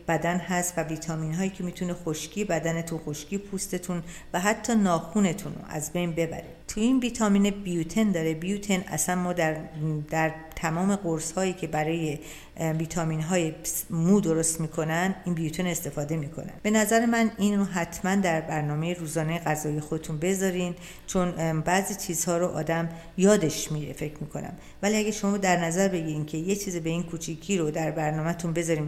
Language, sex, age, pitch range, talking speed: Persian, female, 50-69, 160-190 Hz, 165 wpm